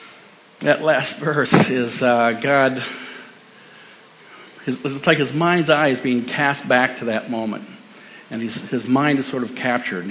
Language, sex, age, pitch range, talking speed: English, male, 50-69, 120-145 Hz, 160 wpm